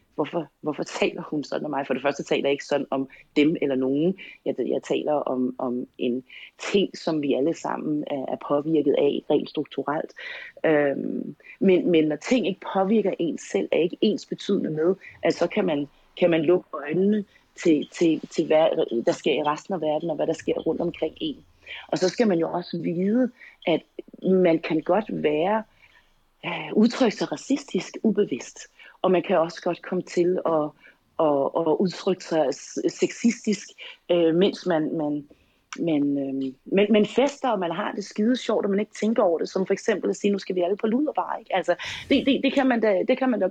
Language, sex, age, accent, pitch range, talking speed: Danish, female, 30-49, native, 160-230 Hz, 195 wpm